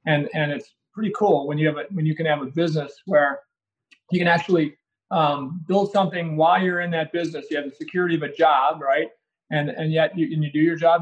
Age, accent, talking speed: 30-49, American, 240 wpm